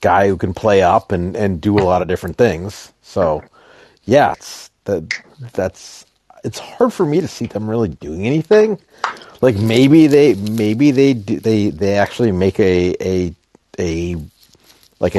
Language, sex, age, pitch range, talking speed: English, male, 40-59, 90-110 Hz, 165 wpm